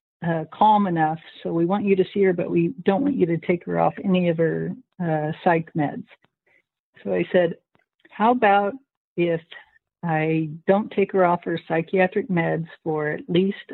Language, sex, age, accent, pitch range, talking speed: English, female, 60-79, American, 170-200 Hz, 185 wpm